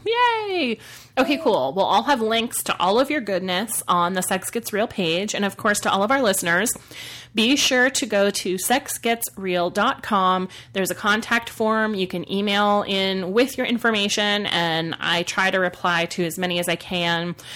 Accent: American